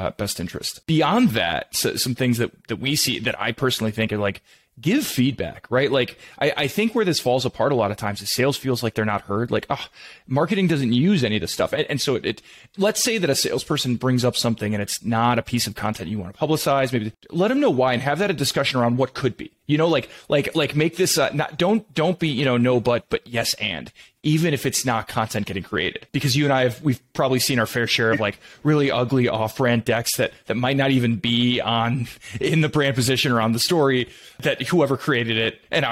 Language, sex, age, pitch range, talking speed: English, male, 20-39, 115-150 Hz, 250 wpm